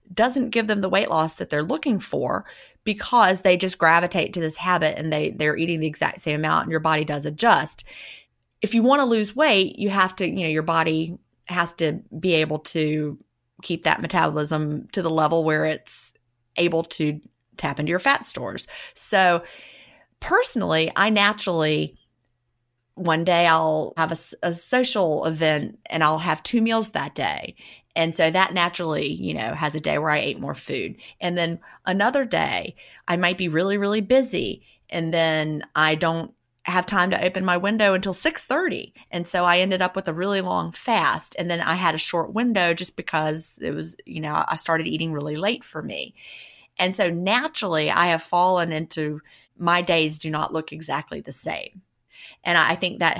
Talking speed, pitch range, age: 190 wpm, 155-190 Hz, 30-49